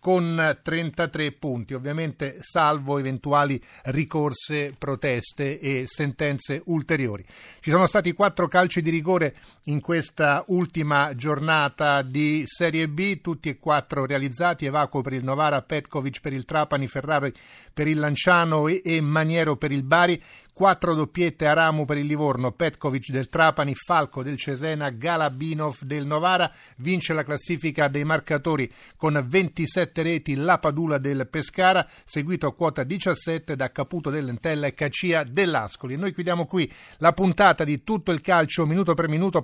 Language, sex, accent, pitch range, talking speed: Italian, male, native, 140-170 Hz, 145 wpm